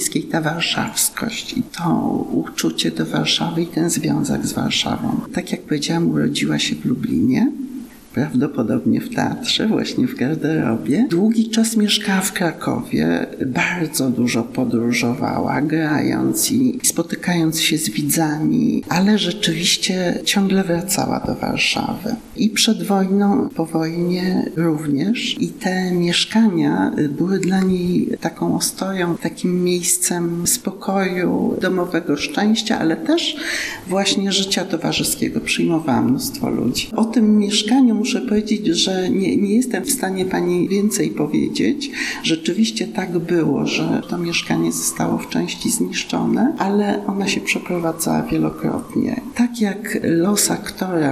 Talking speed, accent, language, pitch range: 125 wpm, native, Polish, 165-230 Hz